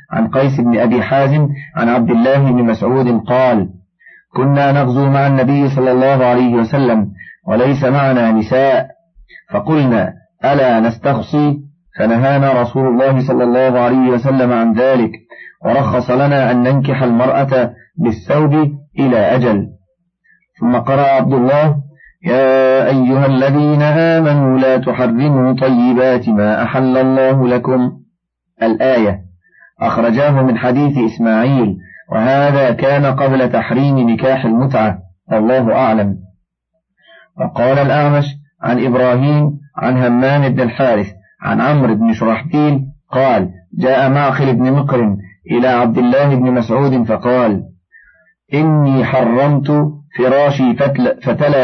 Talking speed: 115 wpm